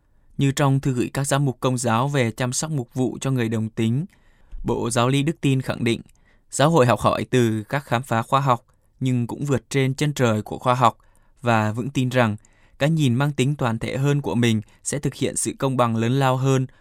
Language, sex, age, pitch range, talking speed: Vietnamese, male, 20-39, 110-135 Hz, 235 wpm